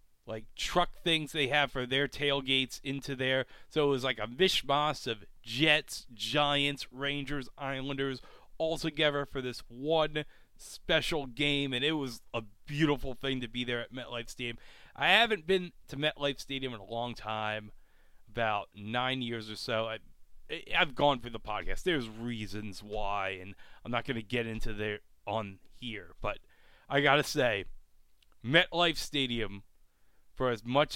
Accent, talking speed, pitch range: American, 160 wpm, 100-140 Hz